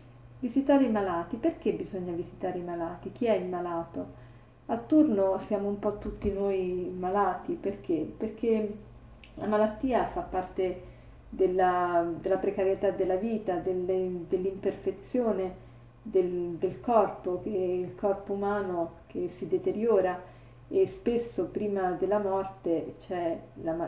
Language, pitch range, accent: Italian, 180-210 Hz, native